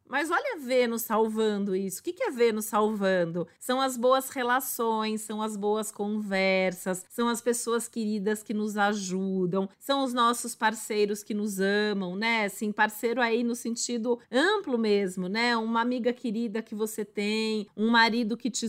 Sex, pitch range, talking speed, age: female, 220-260 Hz, 165 wpm, 40-59